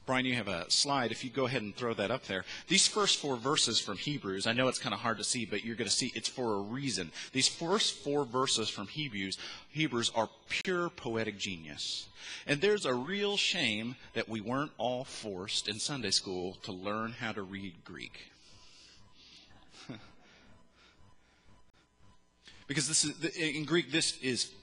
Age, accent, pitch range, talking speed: 30-49, American, 115-155 Hz, 175 wpm